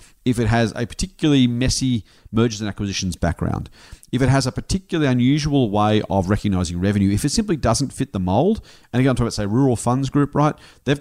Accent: Australian